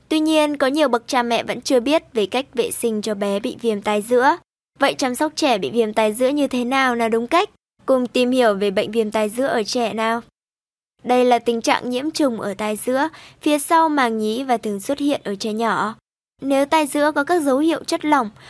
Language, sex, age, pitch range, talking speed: Vietnamese, male, 10-29, 230-290 Hz, 240 wpm